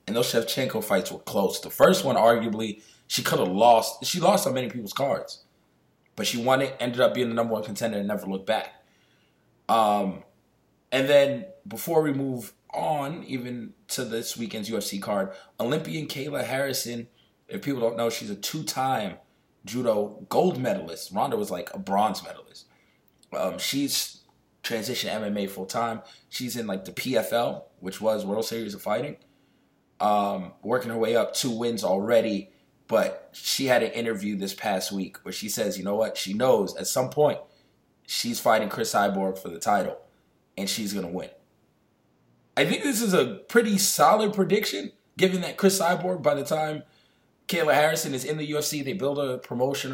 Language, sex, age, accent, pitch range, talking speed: English, male, 20-39, American, 110-150 Hz, 180 wpm